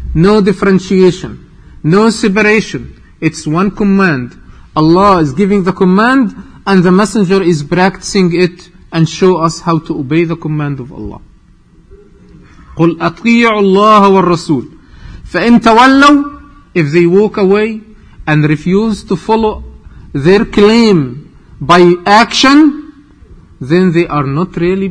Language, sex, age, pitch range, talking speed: English, male, 40-59, 150-205 Hz, 120 wpm